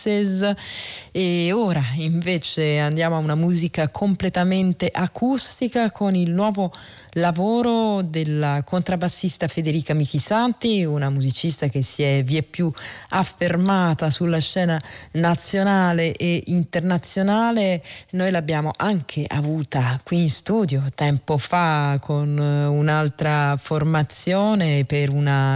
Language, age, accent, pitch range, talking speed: Italian, 20-39, native, 145-185 Hz, 105 wpm